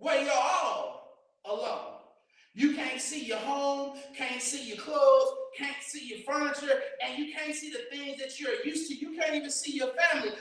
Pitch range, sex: 275-360 Hz, male